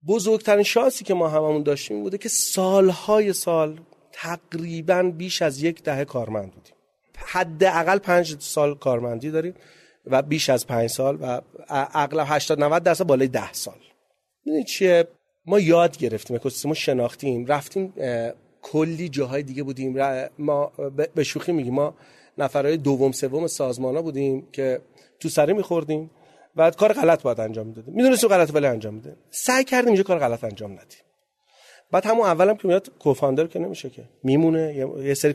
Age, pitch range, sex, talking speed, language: 40-59, 130-180 Hz, male, 160 wpm, Persian